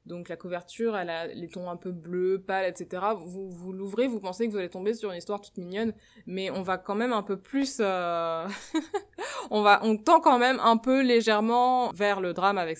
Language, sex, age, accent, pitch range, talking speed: French, female, 20-39, French, 175-215 Hz, 225 wpm